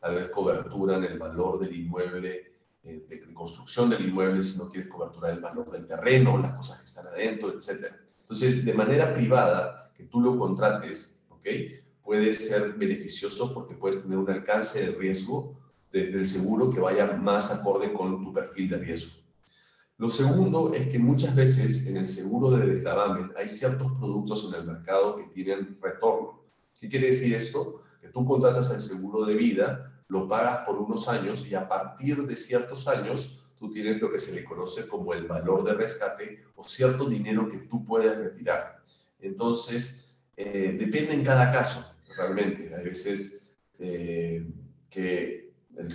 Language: Spanish